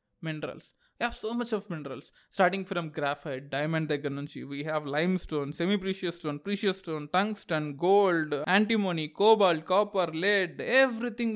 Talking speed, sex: 145 wpm, male